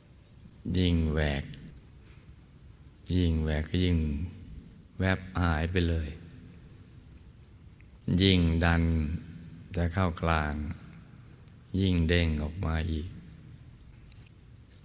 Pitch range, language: 85-100 Hz, Thai